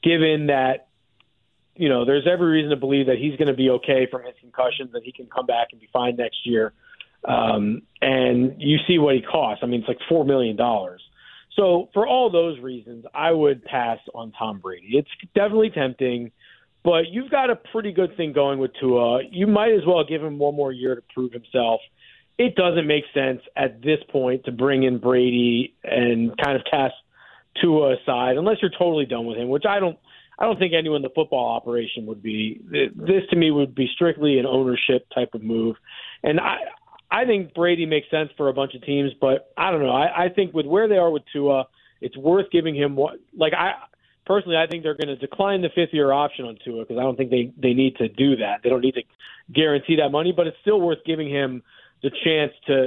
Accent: American